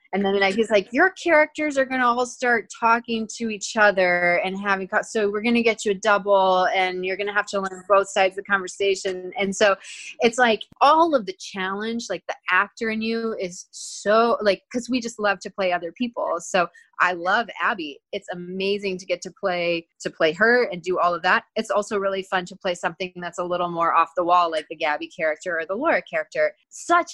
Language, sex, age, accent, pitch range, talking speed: English, female, 20-39, American, 175-225 Hz, 225 wpm